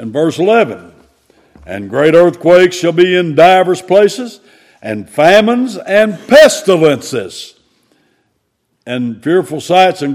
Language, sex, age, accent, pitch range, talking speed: English, male, 60-79, American, 170-235 Hz, 110 wpm